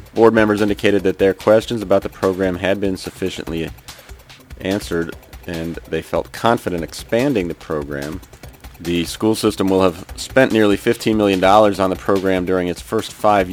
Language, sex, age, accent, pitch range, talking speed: English, male, 40-59, American, 90-105 Hz, 160 wpm